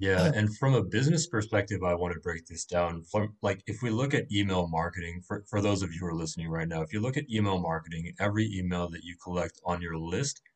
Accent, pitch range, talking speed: American, 85-105 Hz, 245 wpm